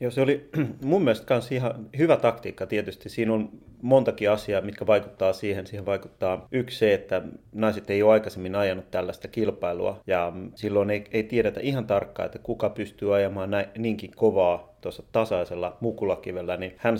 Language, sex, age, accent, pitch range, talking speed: Finnish, male, 30-49, native, 95-110 Hz, 160 wpm